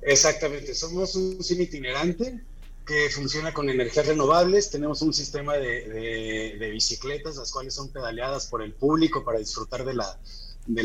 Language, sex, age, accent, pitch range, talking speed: Spanish, male, 30-49, Mexican, 125-155 Hz, 160 wpm